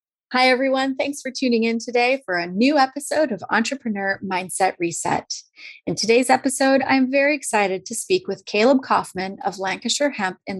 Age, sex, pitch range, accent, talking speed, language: 30-49, female, 190-260 Hz, American, 170 wpm, English